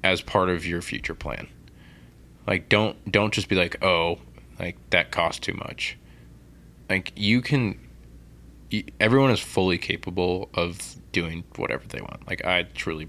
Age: 20-39